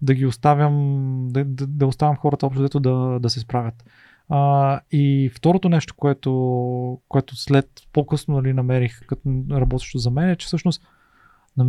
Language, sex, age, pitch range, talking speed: Bulgarian, male, 30-49, 130-160 Hz, 165 wpm